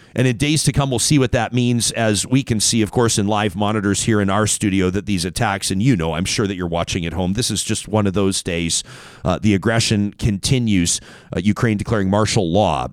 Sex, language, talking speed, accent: male, English, 240 wpm, American